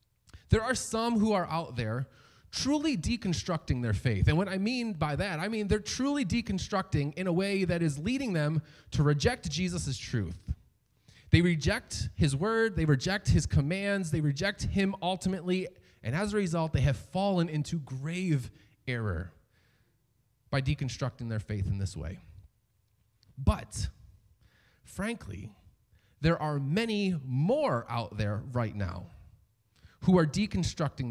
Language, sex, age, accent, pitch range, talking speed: English, male, 30-49, American, 110-180 Hz, 145 wpm